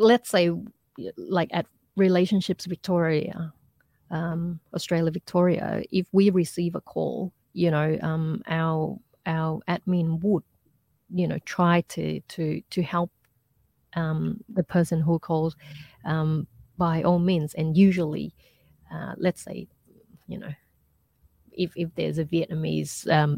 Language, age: English, 30-49